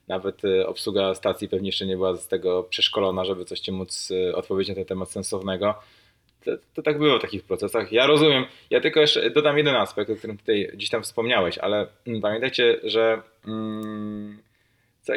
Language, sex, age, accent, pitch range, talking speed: Polish, male, 20-39, native, 95-120 Hz, 175 wpm